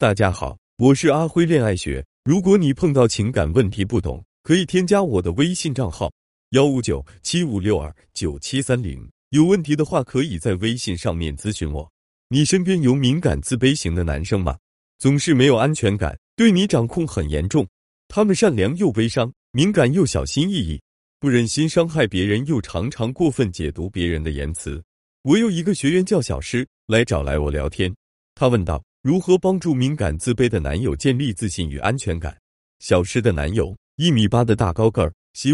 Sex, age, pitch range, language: male, 30-49, 85-145 Hz, Chinese